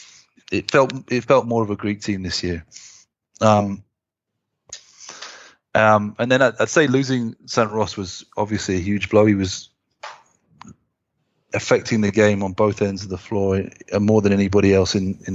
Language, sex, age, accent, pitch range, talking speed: English, male, 30-49, British, 95-110 Hz, 170 wpm